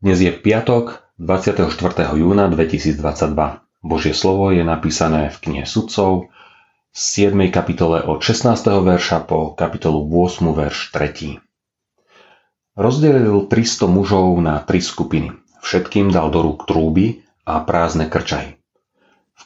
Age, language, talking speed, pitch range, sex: 30-49, Slovak, 120 wpm, 80-105 Hz, male